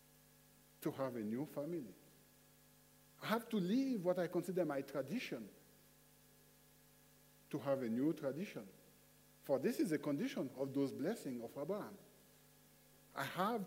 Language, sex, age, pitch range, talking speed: English, male, 50-69, 145-210 Hz, 135 wpm